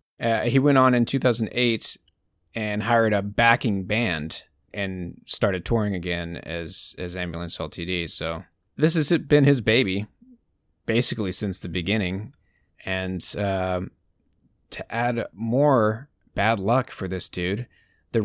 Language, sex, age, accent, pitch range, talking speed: English, male, 30-49, American, 95-120 Hz, 130 wpm